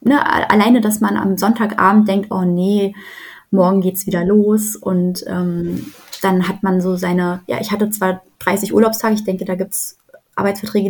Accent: German